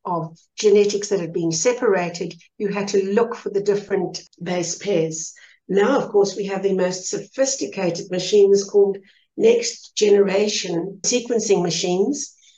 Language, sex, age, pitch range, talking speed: English, female, 60-79, 185-230 Hz, 140 wpm